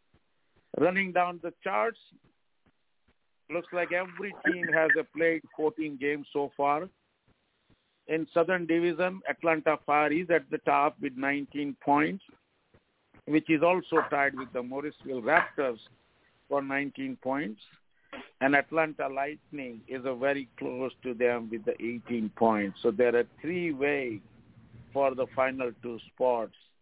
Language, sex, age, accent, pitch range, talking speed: English, male, 50-69, Indian, 120-150 Hz, 135 wpm